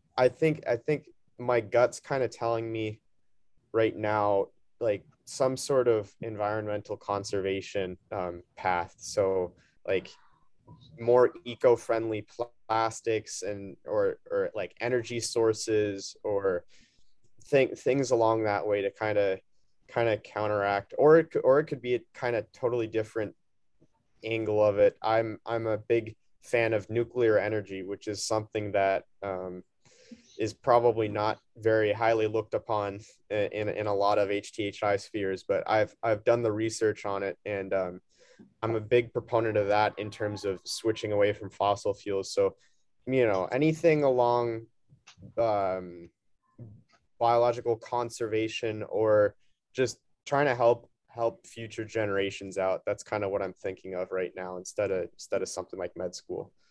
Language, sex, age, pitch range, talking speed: English, male, 20-39, 100-120 Hz, 150 wpm